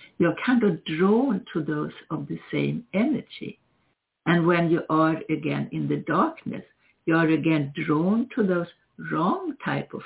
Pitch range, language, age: 155-215 Hz, English, 60-79